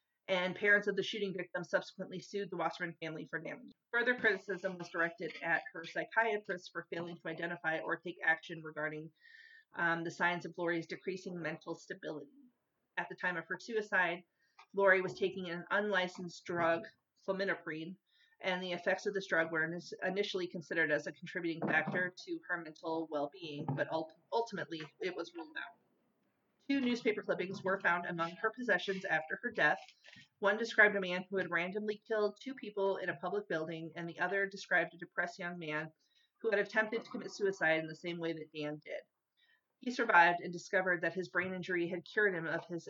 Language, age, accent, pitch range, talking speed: English, 40-59, American, 165-200 Hz, 185 wpm